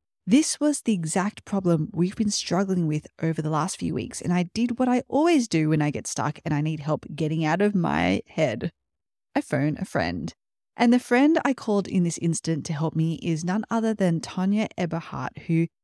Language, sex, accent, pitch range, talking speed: English, female, Australian, 160-225 Hz, 210 wpm